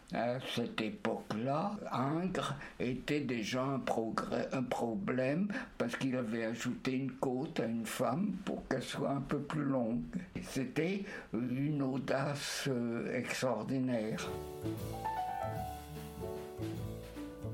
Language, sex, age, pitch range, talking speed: French, male, 60-79, 110-140 Hz, 100 wpm